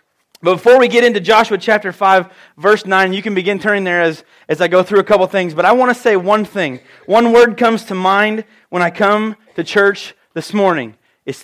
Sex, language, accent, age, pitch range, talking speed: male, English, American, 30-49, 180-215 Hz, 220 wpm